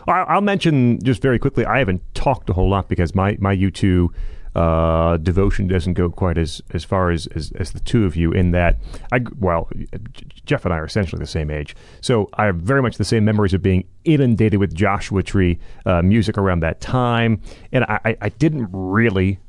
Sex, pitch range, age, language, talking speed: male, 95-125 Hz, 40-59, English, 210 wpm